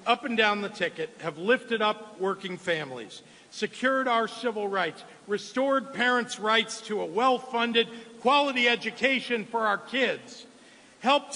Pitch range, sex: 220-265 Hz, male